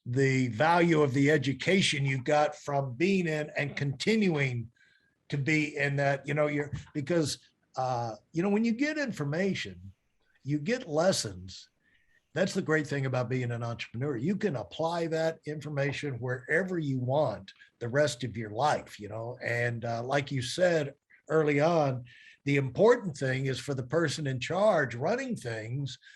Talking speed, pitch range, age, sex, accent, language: 165 wpm, 130-180 Hz, 60-79, male, American, English